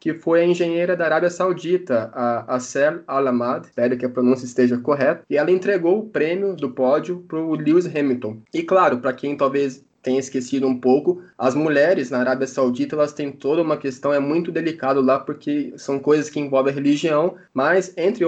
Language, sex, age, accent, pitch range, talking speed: Portuguese, male, 20-39, Brazilian, 140-175 Hz, 195 wpm